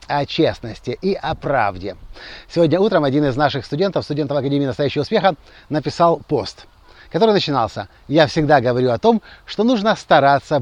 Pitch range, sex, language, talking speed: 140-190 Hz, male, Russian, 155 wpm